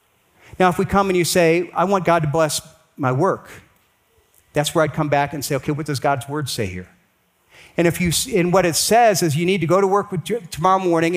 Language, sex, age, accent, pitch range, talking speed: English, male, 50-69, American, 155-200 Hz, 235 wpm